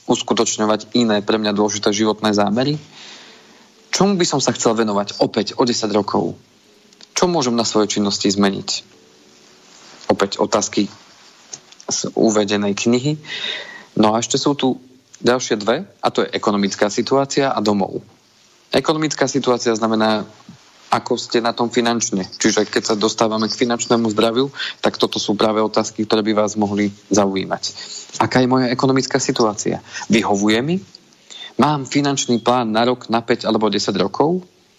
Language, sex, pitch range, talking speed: Slovak, male, 105-130 Hz, 145 wpm